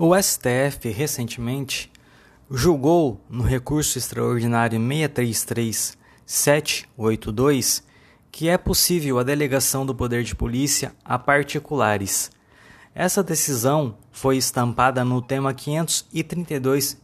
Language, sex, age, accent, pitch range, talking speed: Portuguese, male, 20-39, Brazilian, 120-155 Hz, 90 wpm